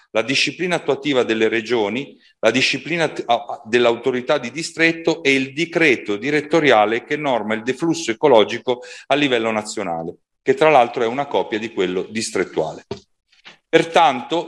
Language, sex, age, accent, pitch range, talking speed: Italian, male, 40-59, native, 115-170 Hz, 135 wpm